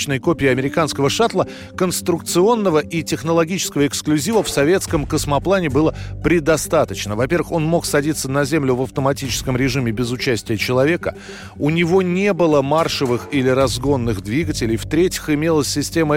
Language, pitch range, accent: Russian, 140-205 Hz, native